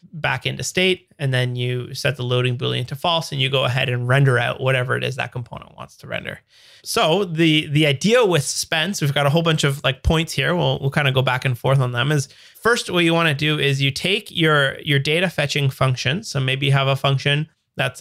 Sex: male